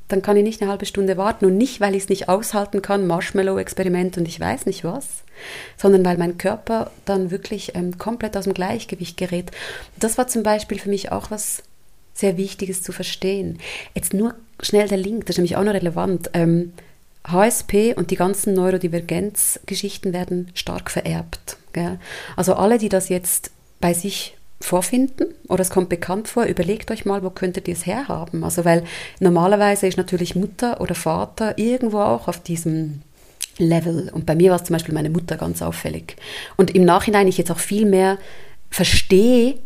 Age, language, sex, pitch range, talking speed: 30-49, German, female, 175-205 Hz, 185 wpm